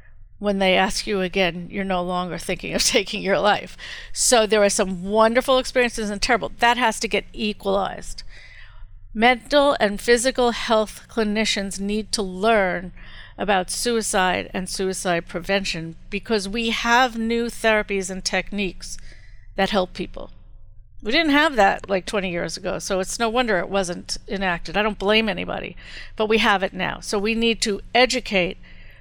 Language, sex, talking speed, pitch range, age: English, female, 160 wpm, 185-220 Hz, 50-69